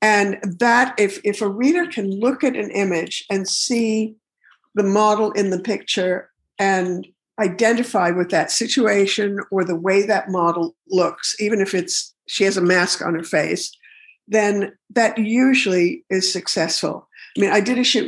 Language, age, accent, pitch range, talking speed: English, 50-69, American, 180-215 Hz, 165 wpm